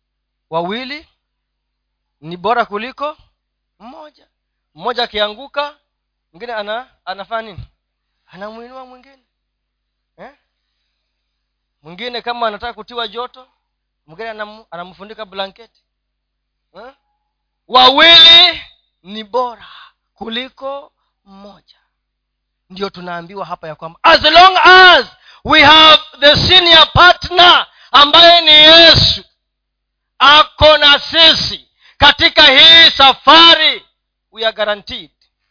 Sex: male